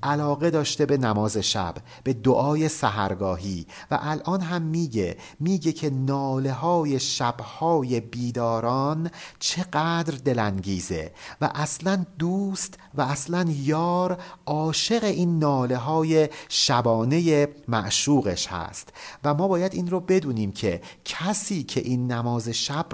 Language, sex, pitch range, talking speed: Persian, male, 110-155 Hz, 120 wpm